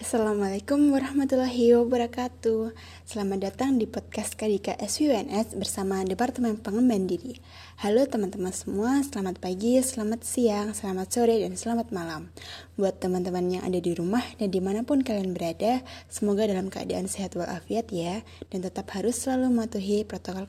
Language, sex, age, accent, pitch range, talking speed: Indonesian, female, 20-39, native, 190-235 Hz, 140 wpm